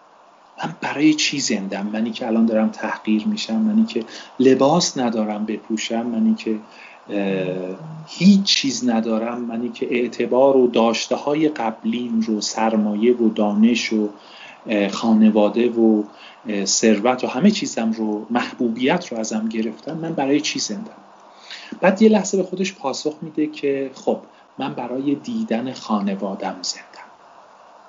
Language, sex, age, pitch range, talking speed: Persian, male, 40-59, 110-150 Hz, 130 wpm